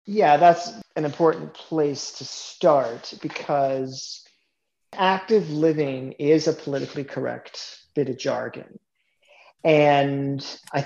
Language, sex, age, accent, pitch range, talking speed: English, male, 40-59, American, 140-170 Hz, 105 wpm